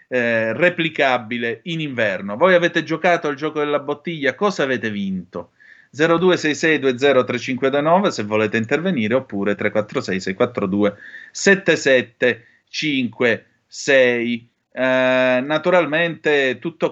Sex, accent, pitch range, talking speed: male, native, 110-135 Hz, 80 wpm